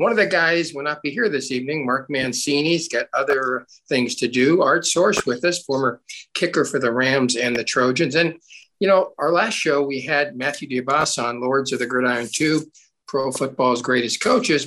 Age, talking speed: 50-69, 200 wpm